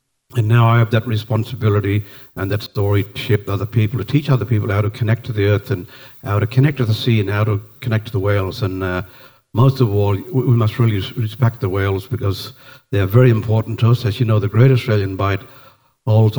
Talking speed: 225 wpm